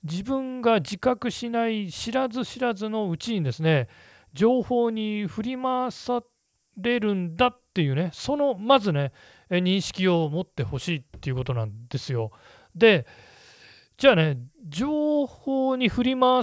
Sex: male